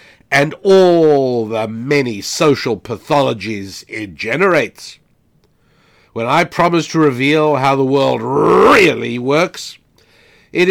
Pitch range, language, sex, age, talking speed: 130-155 Hz, English, male, 60-79, 105 wpm